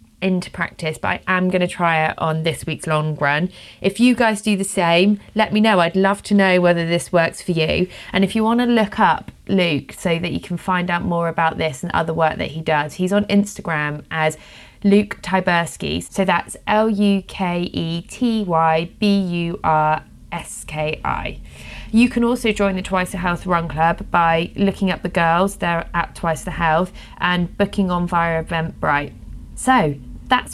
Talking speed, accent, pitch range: 180 wpm, British, 160-200 Hz